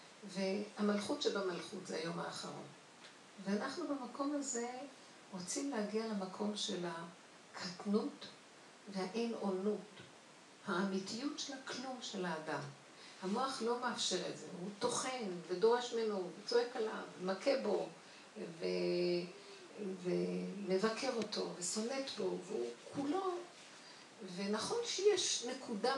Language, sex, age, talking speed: Hebrew, female, 50-69, 100 wpm